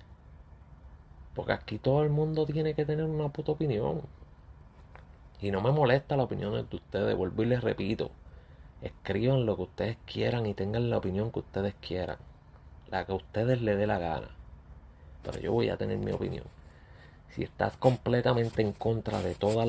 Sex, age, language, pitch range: male, 30-49, Spanish, 75-115 Hz